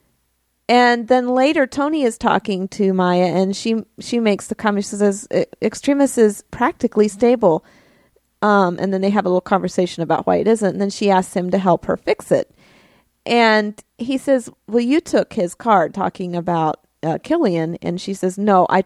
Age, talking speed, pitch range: 40-59, 190 wpm, 185-230 Hz